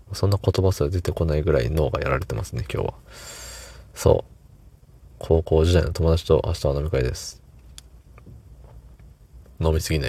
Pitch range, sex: 80-110 Hz, male